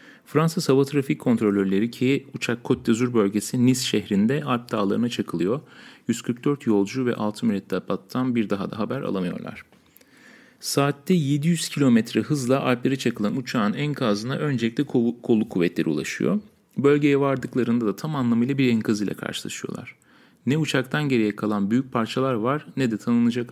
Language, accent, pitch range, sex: Turkish, native, 115-155 Hz, male